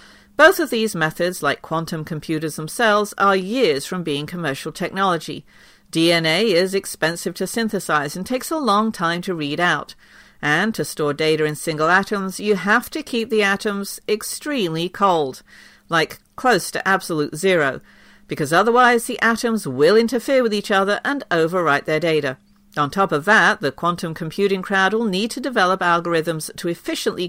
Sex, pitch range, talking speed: female, 160-220 Hz, 165 wpm